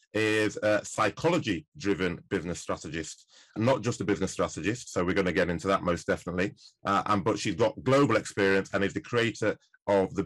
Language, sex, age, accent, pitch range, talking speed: English, male, 30-49, British, 95-110 Hz, 200 wpm